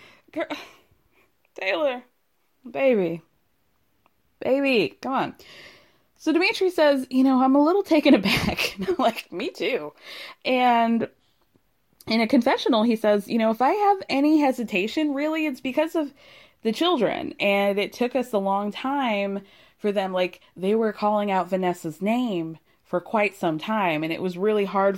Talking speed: 150 wpm